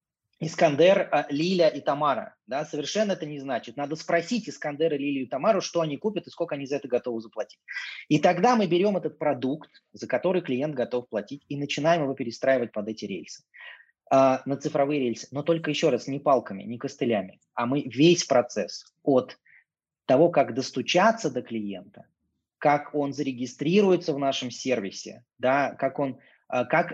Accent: native